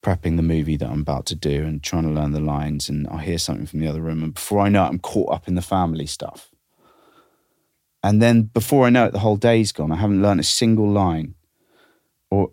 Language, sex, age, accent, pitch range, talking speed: English, male, 30-49, British, 80-100 Hz, 245 wpm